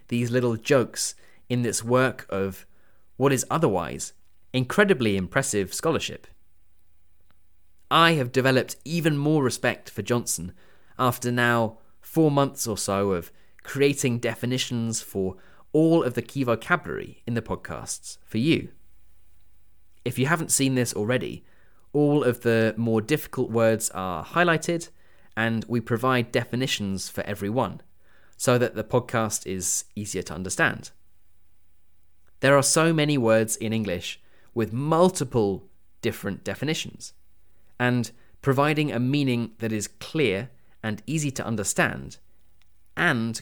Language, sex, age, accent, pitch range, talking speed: English, male, 20-39, British, 95-130 Hz, 130 wpm